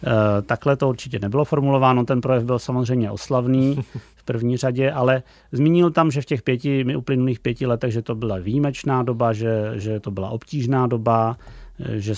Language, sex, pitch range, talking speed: Czech, male, 110-125 Hz, 175 wpm